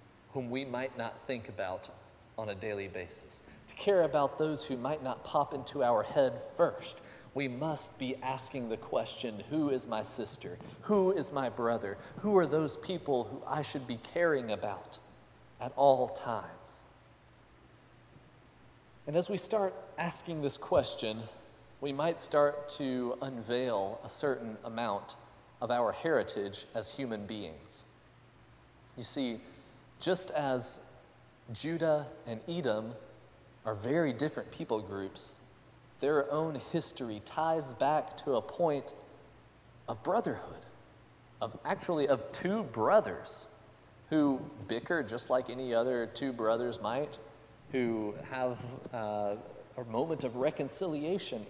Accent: American